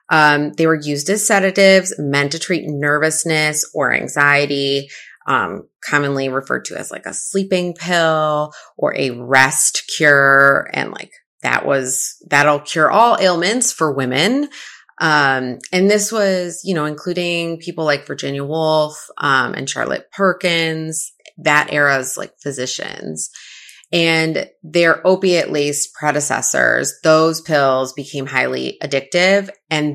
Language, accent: English, American